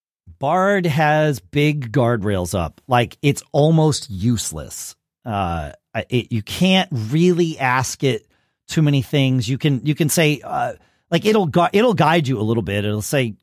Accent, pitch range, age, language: American, 100-160 Hz, 40-59, English